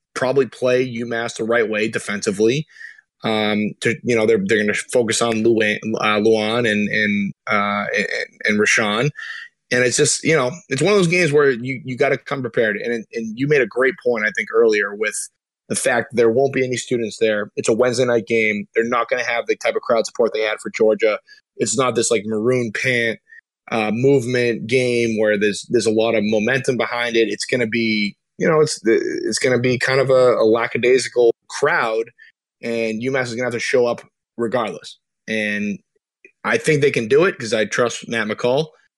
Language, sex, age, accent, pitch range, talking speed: English, male, 20-39, American, 110-135 Hz, 210 wpm